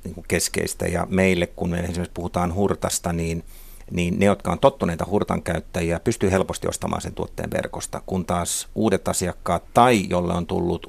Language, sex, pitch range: Finnish, male, 85-100 Hz